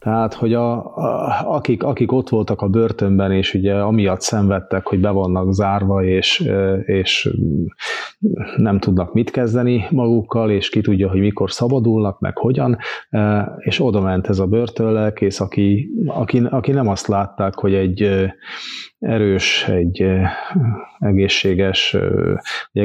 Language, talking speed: Hungarian, 130 wpm